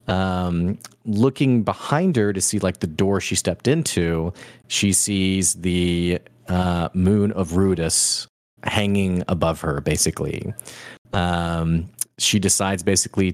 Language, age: English, 30-49